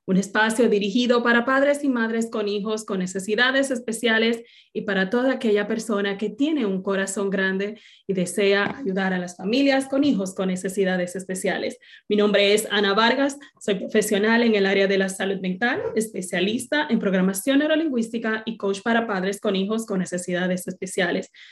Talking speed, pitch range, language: 165 wpm, 200-245 Hz, Spanish